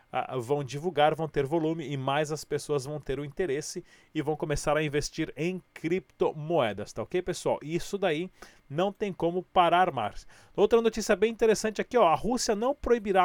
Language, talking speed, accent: Portuguese, 180 wpm, Brazilian